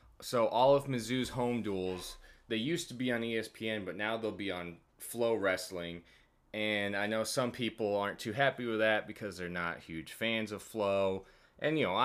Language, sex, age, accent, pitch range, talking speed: English, male, 30-49, American, 90-110 Hz, 195 wpm